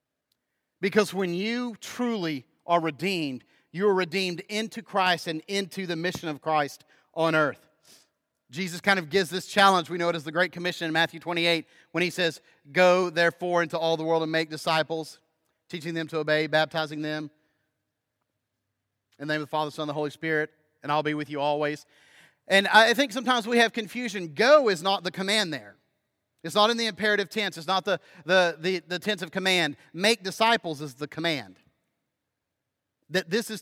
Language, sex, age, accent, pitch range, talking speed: English, male, 40-59, American, 150-195 Hz, 190 wpm